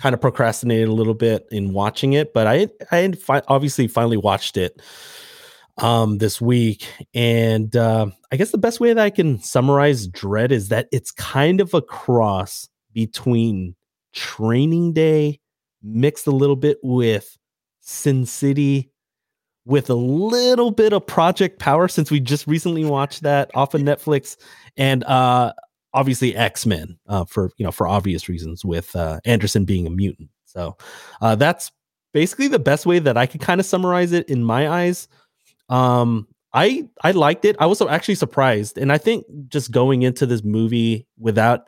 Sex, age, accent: male, 30-49, American